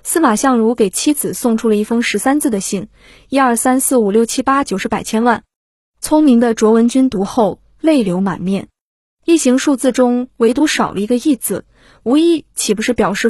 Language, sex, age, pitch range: Chinese, female, 20-39, 215-260 Hz